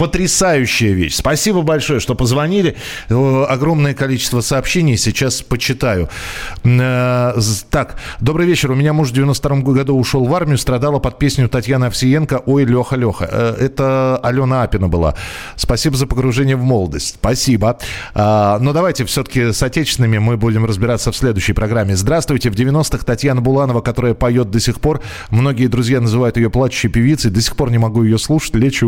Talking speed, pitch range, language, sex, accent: 160 wpm, 110-140 Hz, Russian, male, native